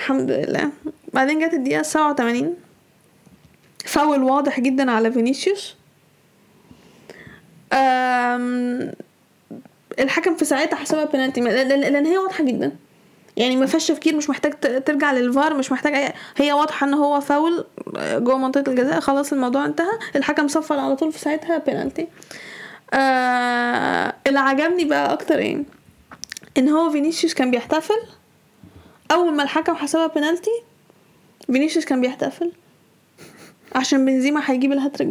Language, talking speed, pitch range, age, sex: Arabic, 125 wpm, 265-320 Hz, 10-29, female